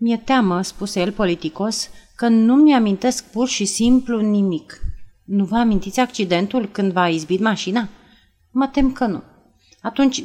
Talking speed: 145 wpm